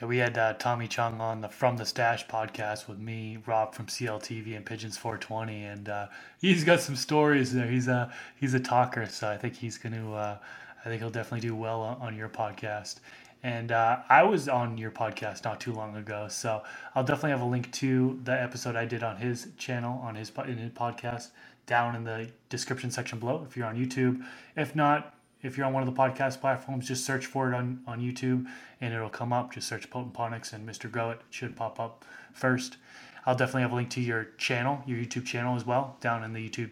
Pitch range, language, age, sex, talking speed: 115-130 Hz, English, 20-39, male, 225 wpm